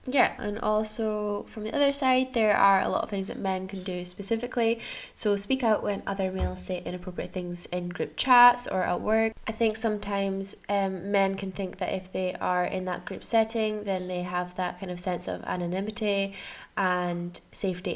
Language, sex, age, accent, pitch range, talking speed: English, female, 10-29, British, 175-205 Hz, 195 wpm